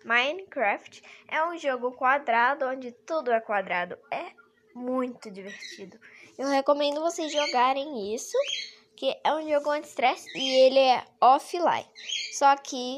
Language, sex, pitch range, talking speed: Portuguese, female, 240-330 Hz, 130 wpm